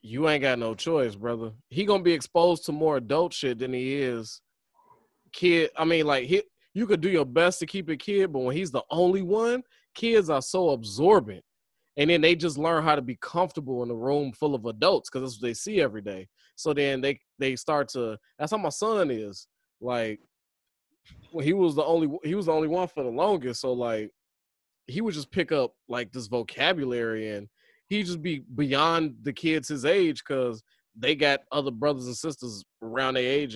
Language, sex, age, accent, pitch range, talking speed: English, male, 20-39, American, 130-185 Hz, 210 wpm